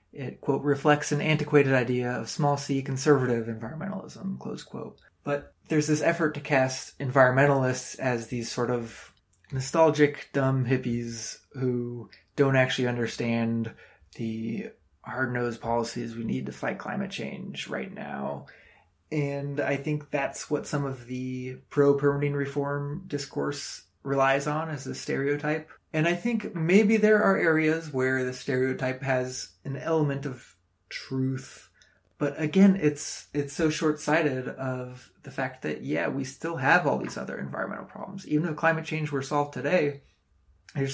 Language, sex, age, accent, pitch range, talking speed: English, male, 20-39, American, 125-145 Hz, 145 wpm